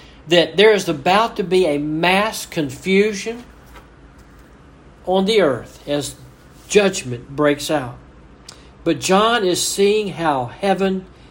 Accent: American